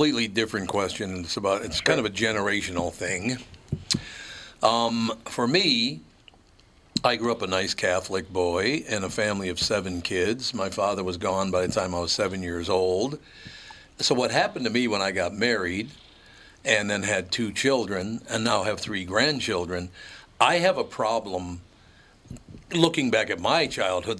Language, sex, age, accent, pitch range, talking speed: English, male, 60-79, American, 95-125 Hz, 165 wpm